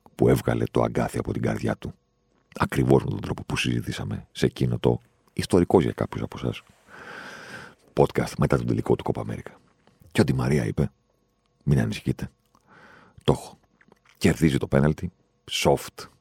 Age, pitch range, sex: 40-59, 65-80 Hz, male